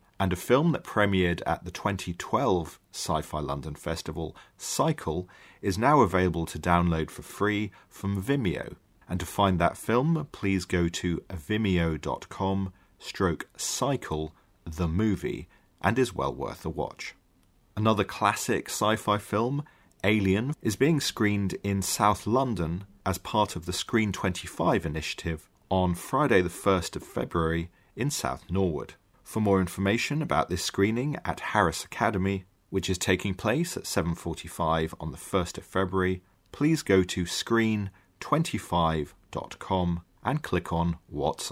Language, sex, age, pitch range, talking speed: English, male, 30-49, 85-105 Hz, 135 wpm